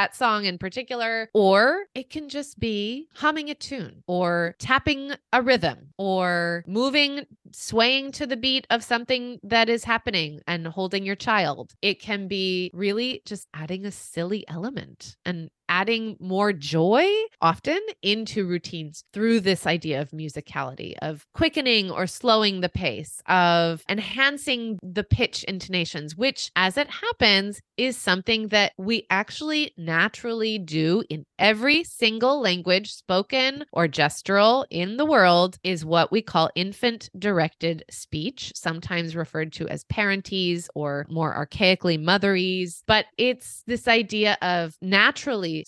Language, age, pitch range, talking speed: English, 20-39, 170-230 Hz, 140 wpm